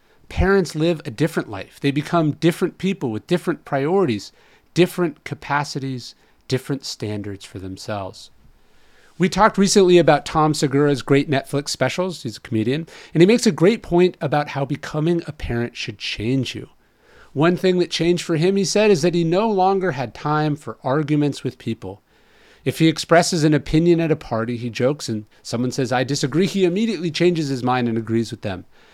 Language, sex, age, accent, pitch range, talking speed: English, male, 40-59, American, 130-175 Hz, 180 wpm